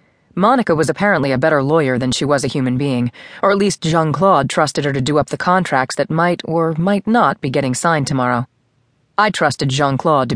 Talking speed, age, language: 210 wpm, 30-49, English